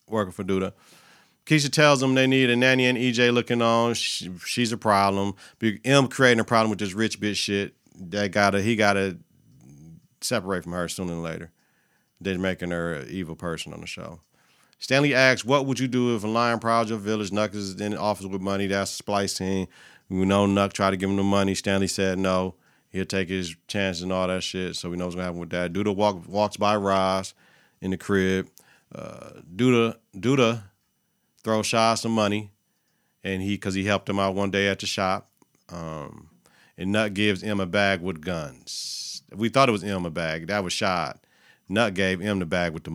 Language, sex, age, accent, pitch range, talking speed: English, male, 40-59, American, 95-115 Hz, 210 wpm